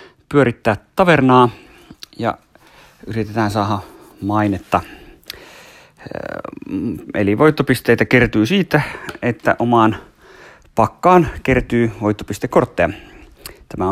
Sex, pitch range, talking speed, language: male, 100-130 Hz, 70 wpm, Finnish